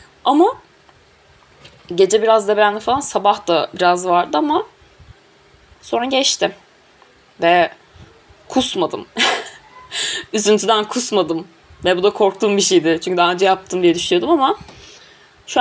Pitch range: 180-220 Hz